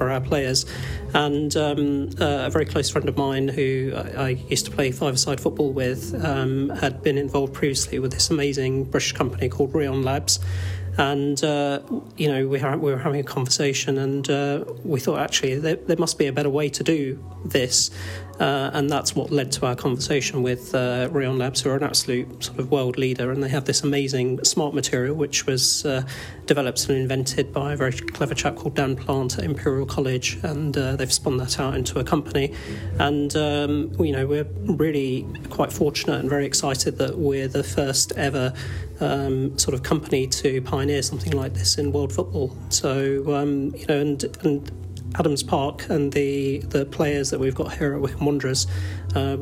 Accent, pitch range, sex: British, 130-145 Hz, male